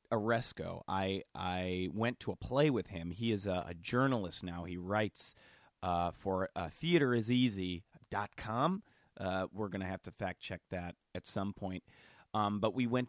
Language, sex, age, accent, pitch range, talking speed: English, male, 30-49, American, 100-125 Hz, 170 wpm